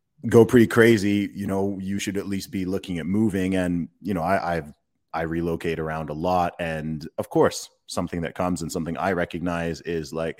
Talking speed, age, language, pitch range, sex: 200 wpm, 30-49, English, 80-95 Hz, male